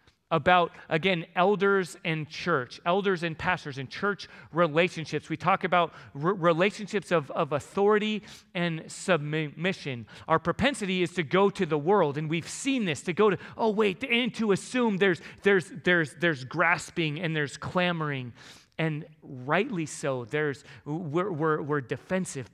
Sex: male